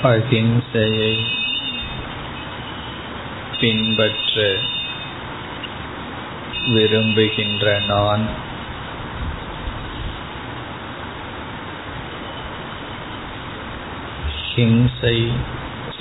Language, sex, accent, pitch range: Tamil, male, native, 105-120 Hz